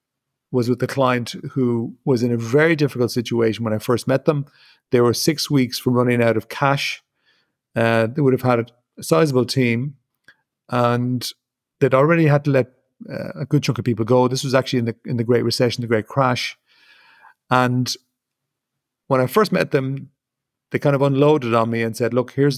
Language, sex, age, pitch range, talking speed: English, male, 40-59, 120-135 Hz, 195 wpm